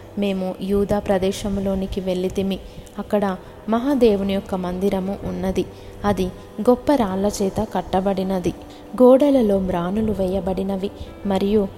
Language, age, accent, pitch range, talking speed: Telugu, 20-39, native, 185-215 Hz, 90 wpm